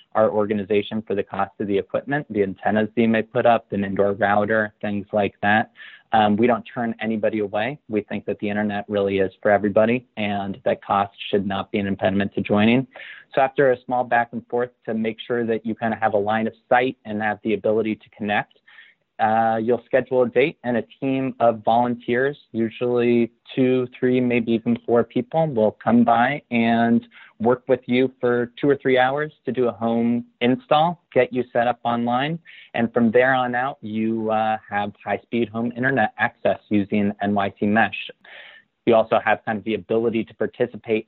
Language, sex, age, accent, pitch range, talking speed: English, male, 30-49, American, 105-120 Hz, 195 wpm